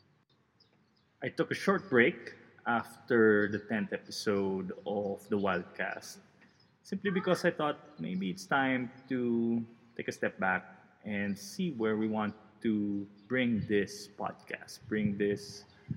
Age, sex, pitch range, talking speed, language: 20-39, male, 105-130 Hz, 130 wpm, English